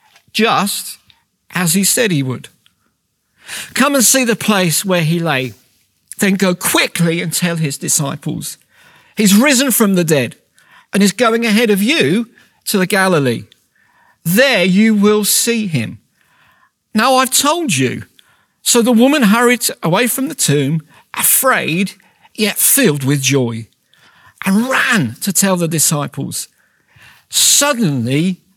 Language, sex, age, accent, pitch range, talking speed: English, male, 50-69, British, 155-220 Hz, 135 wpm